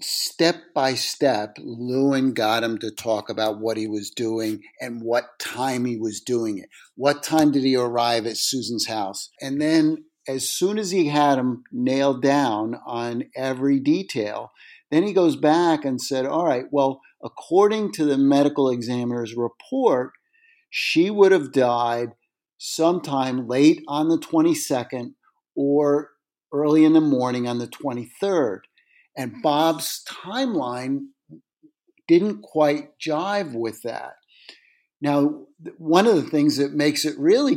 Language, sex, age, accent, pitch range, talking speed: English, male, 50-69, American, 125-155 Hz, 145 wpm